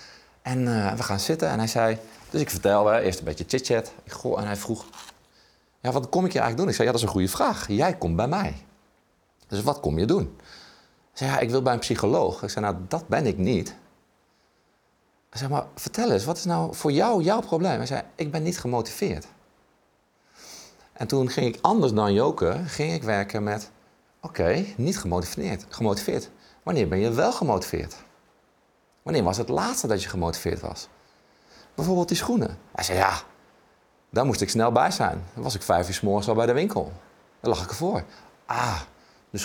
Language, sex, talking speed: Dutch, male, 205 wpm